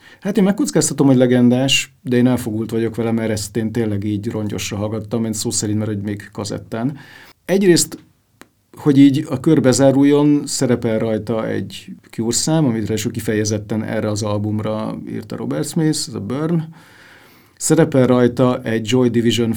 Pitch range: 110-140 Hz